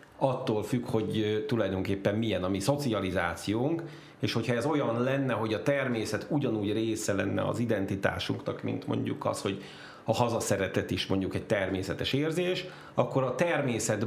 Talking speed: 150 wpm